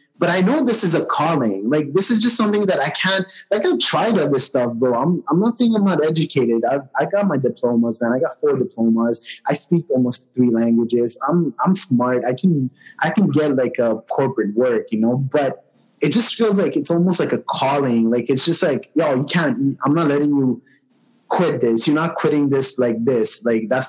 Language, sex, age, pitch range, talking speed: English, male, 20-39, 125-175 Hz, 225 wpm